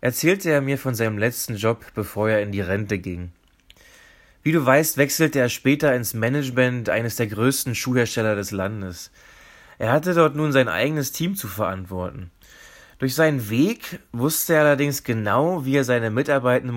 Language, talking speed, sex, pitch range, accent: German, 170 wpm, male, 110-150 Hz, German